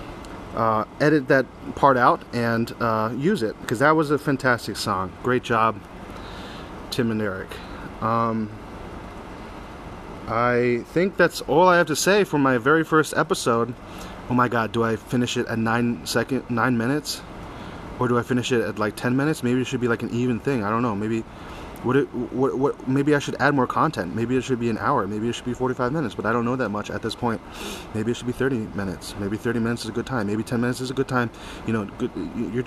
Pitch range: 110-135 Hz